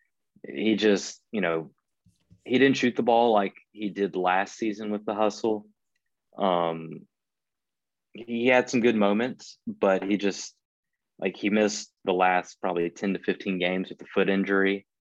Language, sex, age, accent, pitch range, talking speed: English, male, 20-39, American, 85-105 Hz, 160 wpm